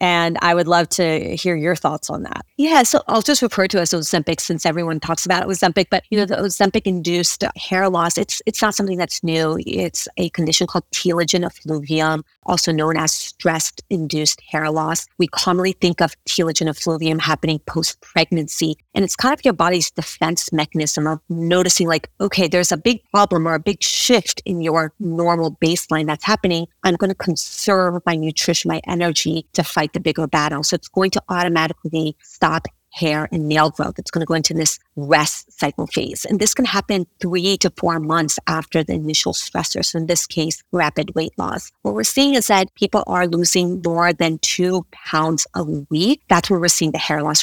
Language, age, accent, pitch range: English, 30-49, American, 155-180 Hz